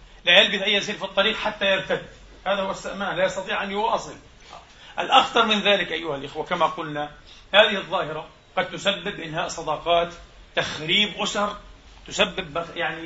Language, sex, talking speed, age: Arabic, male, 145 wpm, 40-59